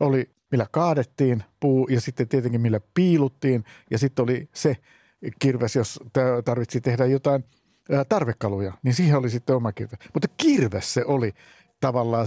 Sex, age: male, 50-69